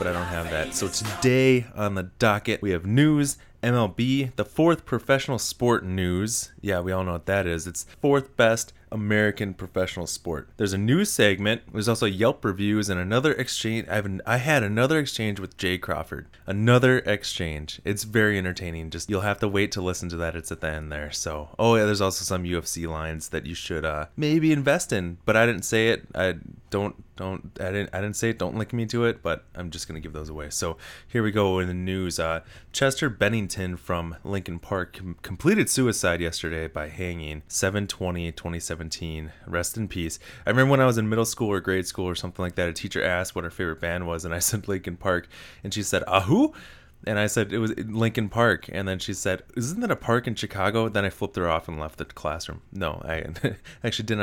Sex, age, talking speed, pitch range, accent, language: male, 20-39, 220 wpm, 85-115 Hz, American, English